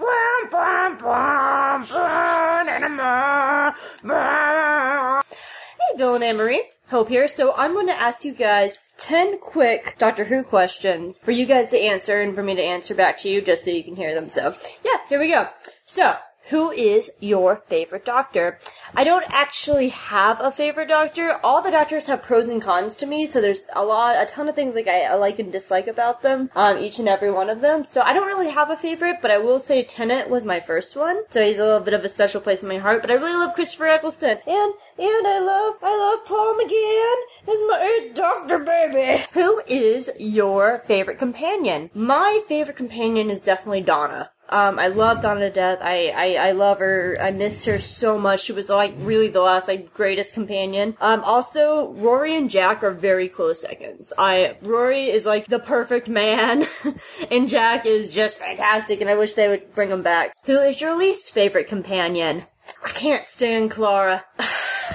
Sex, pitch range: female, 205-310 Hz